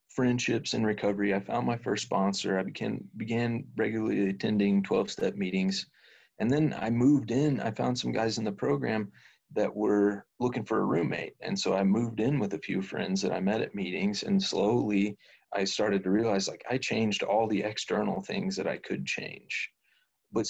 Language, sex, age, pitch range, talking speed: English, male, 30-49, 95-120 Hz, 190 wpm